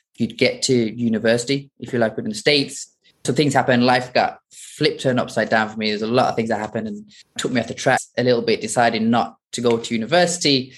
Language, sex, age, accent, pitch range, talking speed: English, male, 20-39, British, 115-135 Hz, 240 wpm